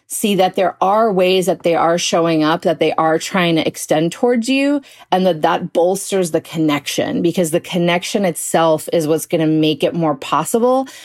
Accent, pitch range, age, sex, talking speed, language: American, 165-210 Hz, 30-49, female, 195 wpm, English